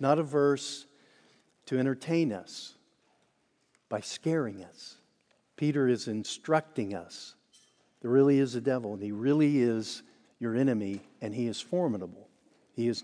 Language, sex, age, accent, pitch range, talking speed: English, male, 50-69, American, 150-210 Hz, 135 wpm